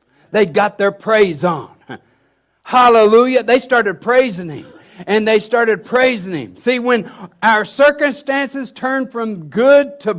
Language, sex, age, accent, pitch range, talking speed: English, male, 60-79, American, 170-245 Hz, 135 wpm